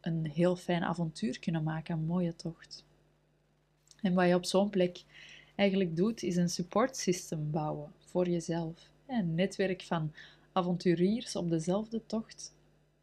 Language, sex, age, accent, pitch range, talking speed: Dutch, female, 20-39, Dutch, 165-190 Hz, 140 wpm